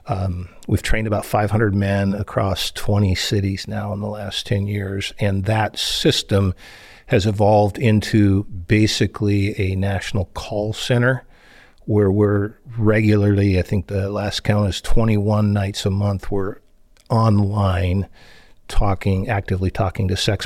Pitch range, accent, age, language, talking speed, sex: 95-105 Hz, American, 50-69, English, 135 wpm, male